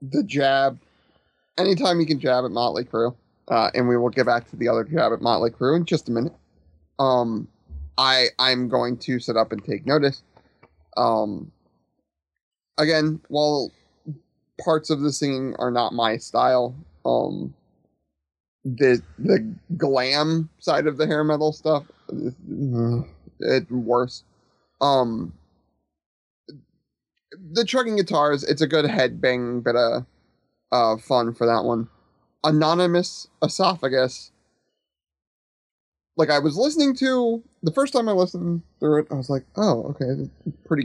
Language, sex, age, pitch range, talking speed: English, male, 30-49, 120-160 Hz, 140 wpm